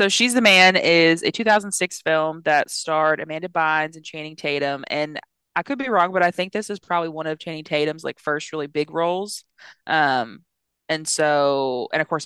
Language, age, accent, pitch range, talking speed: English, 20-39, American, 150-175 Hz, 200 wpm